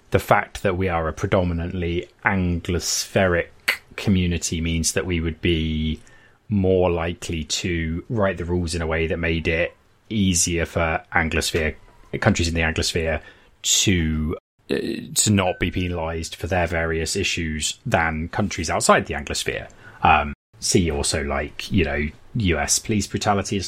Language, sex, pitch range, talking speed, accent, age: English, male, 85-105 Hz, 145 wpm, British, 30-49